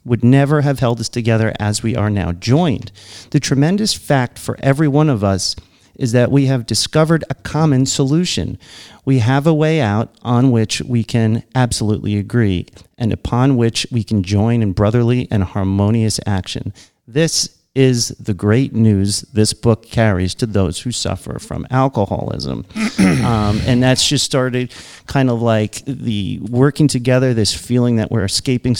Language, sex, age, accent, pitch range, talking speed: English, male, 40-59, American, 105-135 Hz, 165 wpm